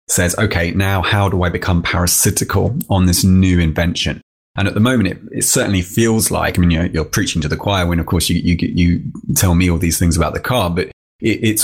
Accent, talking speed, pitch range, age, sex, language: British, 235 wpm, 80-100 Hz, 30-49, male, English